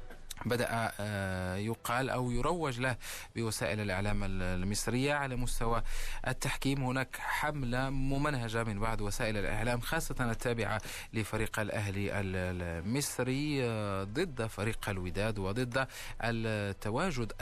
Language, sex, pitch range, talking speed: Arabic, male, 110-130 Hz, 95 wpm